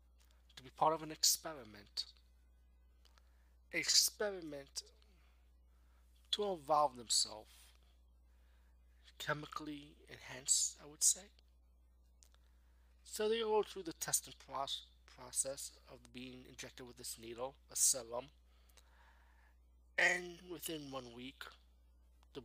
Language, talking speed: English, 95 wpm